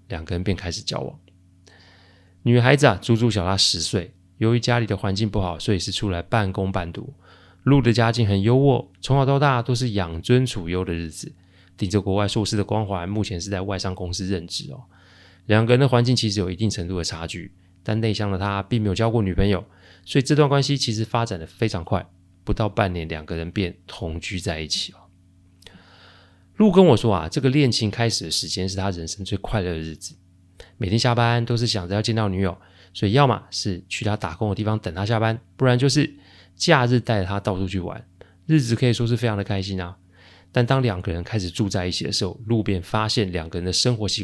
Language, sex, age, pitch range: Chinese, male, 20-39, 90-115 Hz